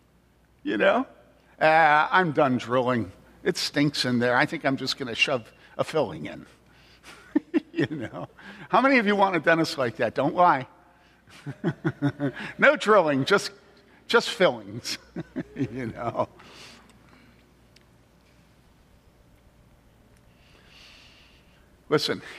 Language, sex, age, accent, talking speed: English, male, 50-69, American, 110 wpm